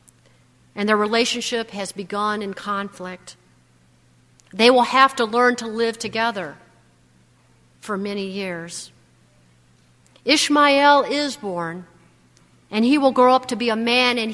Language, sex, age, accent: Russian, female, 50-69, American